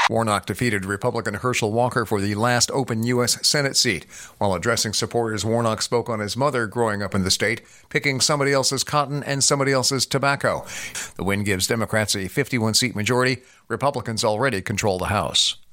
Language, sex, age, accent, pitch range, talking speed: English, male, 50-69, American, 110-140 Hz, 170 wpm